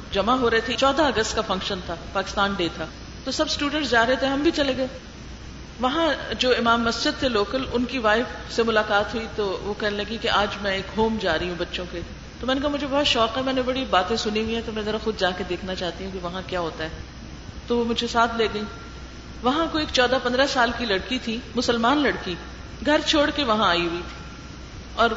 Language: Urdu